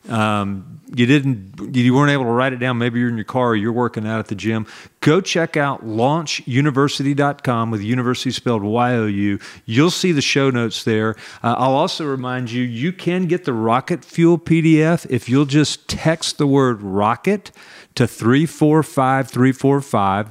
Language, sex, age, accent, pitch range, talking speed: English, male, 40-59, American, 115-150 Hz, 190 wpm